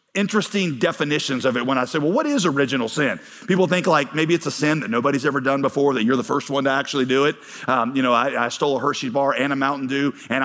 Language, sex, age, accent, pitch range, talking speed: English, male, 40-59, American, 135-175 Hz, 270 wpm